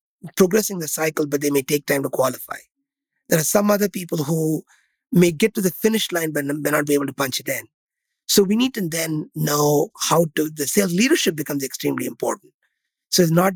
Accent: Indian